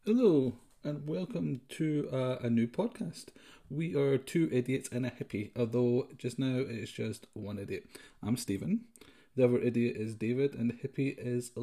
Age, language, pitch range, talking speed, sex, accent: 30-49, English, 115-145 Hz, 170 wpm, male, British